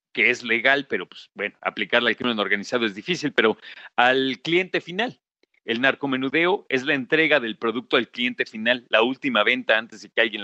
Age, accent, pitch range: 40-59, Mexican, 125-160 Hz